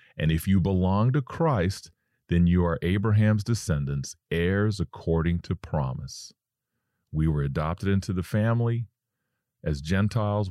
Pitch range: 75-100 Hz